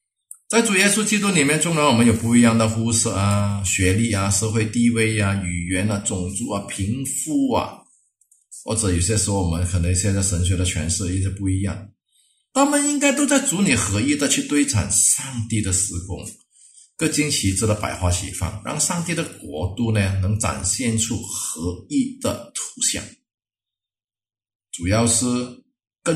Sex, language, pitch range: male, English, 100-135 Hz